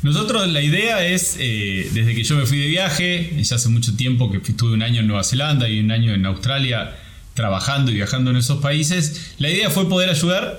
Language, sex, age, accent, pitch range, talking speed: Spanish, male, 20-39, Argentinian, 115-160 Hz, 220 wpm